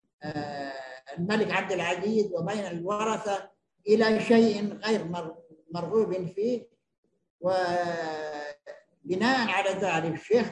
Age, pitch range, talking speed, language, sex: 50-69, 175-210 Hz, 80 wpm, Arabic, male